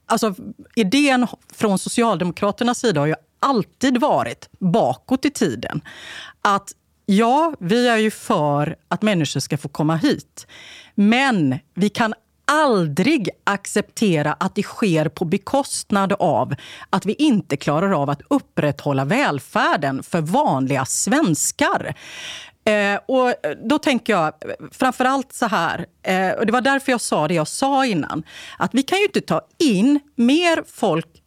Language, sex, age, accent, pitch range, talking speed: Swedish, female, 40-59, native, 160-260 Hz, 140 wpm